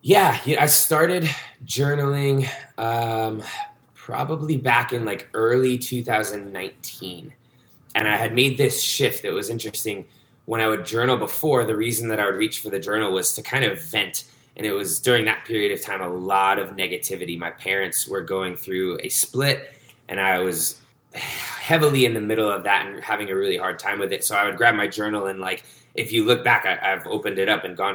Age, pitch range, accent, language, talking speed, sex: 20-39, 105-140 Hz, American, English, 200 wpm, male